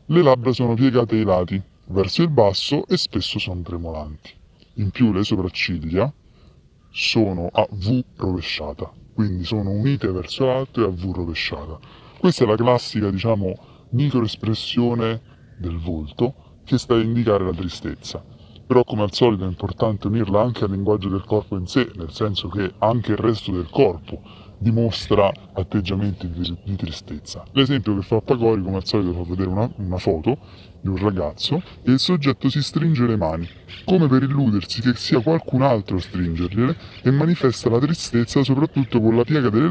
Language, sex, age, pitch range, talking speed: Italian, female, 30-49, 95-125 Hz, 170 wpm